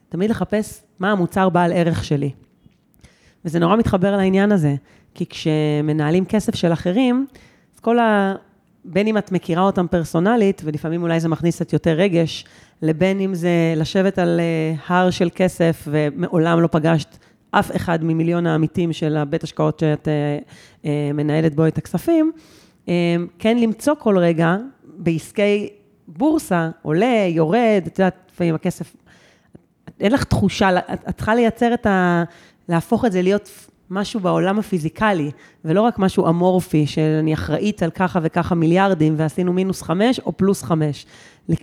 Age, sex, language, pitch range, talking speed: 30-49, female, Hebrew, 165-205 Hz, 140 wpm